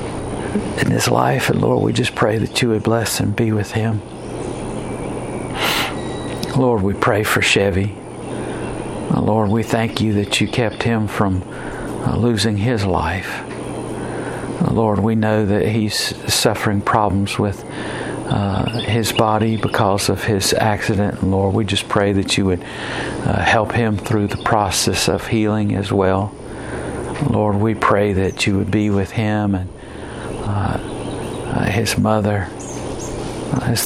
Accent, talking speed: American, 145 wpm